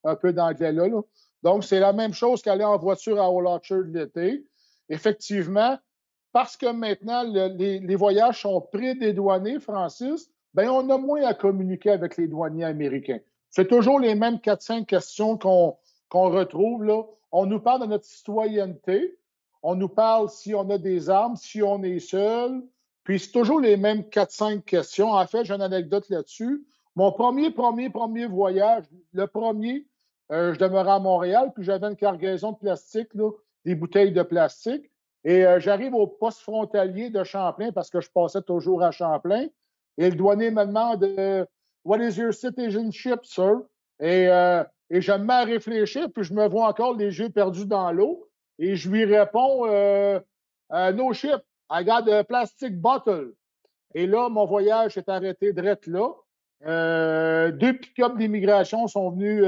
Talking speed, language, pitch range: 170 wpm, French, 185-230 Hz